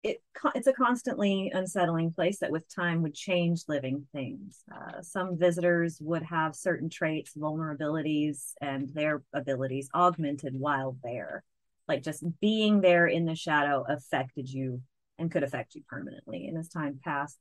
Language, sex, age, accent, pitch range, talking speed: English, female, 30-49, American, 150-190 Hz, 155 wpm